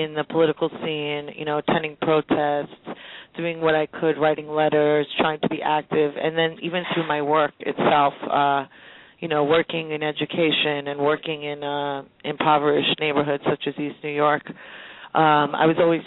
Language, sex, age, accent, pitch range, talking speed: English, female, 30-49, American, 145-160 Hz, 170 wpm